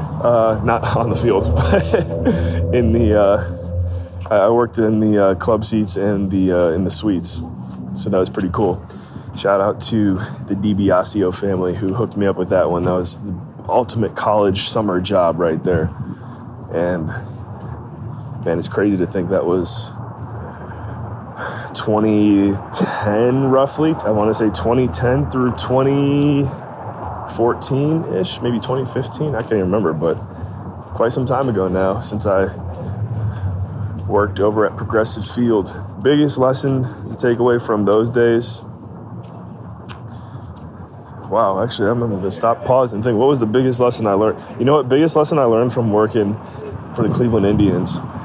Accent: American